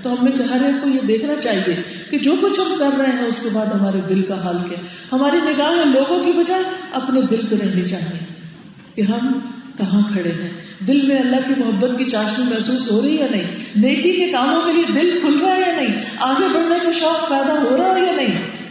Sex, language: female, Urdu